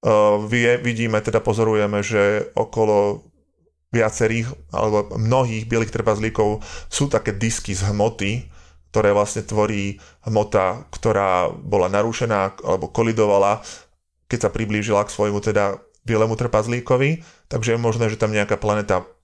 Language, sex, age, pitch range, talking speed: Slovak, male, 20-39, 105-115 Hz, 120 wpm